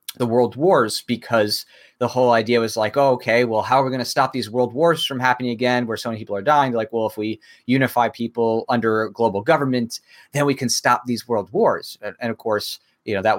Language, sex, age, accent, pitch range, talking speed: English, male, 30-49, American, 110-125 Hz, 235 wpm